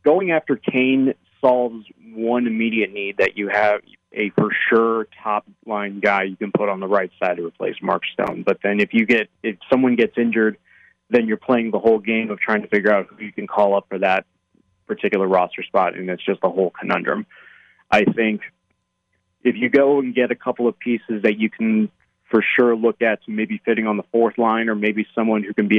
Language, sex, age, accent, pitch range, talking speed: English, male, 30-49, American, 100-115 Hz, 215 wpm